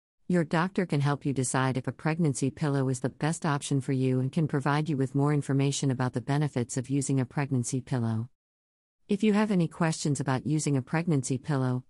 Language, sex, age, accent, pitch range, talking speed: English, female, 50-69, American, 130-165 Hz, 205 wpm